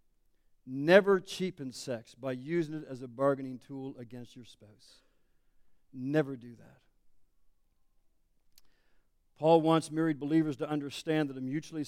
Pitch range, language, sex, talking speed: 130-155 Hz, English, male, 125 wpm